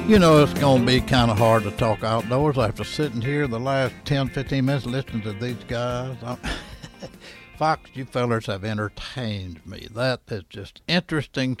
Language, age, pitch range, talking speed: English, 60-79, 110-145 Hz, 170 wpm